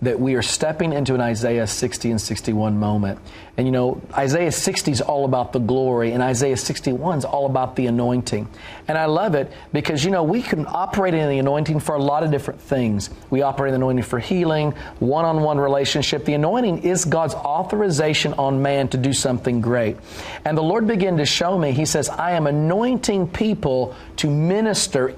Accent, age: American, 40-59